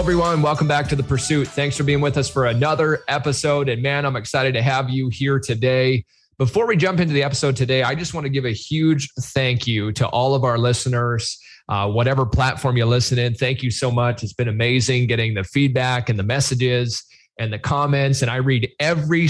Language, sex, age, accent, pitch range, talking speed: English, male, 20-39, American, 120-140 Hz, 220 wpm